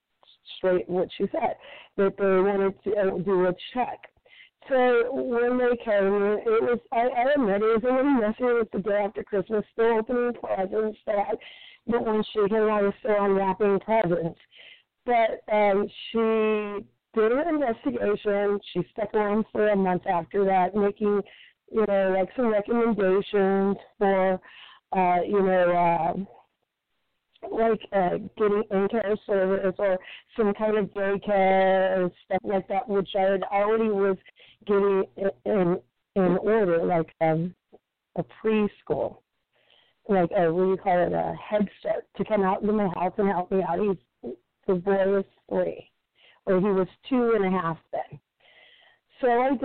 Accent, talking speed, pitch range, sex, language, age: American, 165 wpm, 190-225 Hz, female, English, 30-49